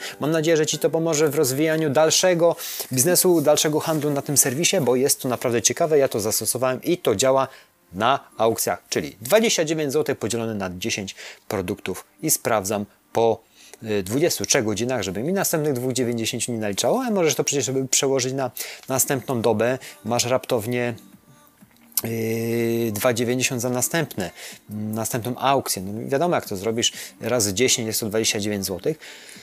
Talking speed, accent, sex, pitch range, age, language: 145 wpm, native, male, 110-150 Hz, 30-49, Polish